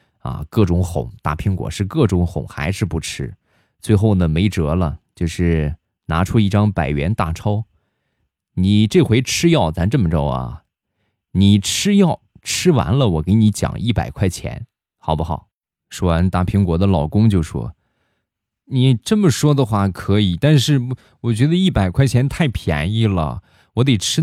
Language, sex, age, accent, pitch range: Chinese, male, 20-39, native, 85-105 Hz